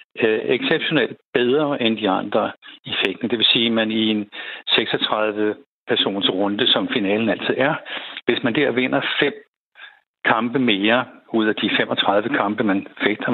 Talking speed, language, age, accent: 155 wpm, Danish, 60-79, native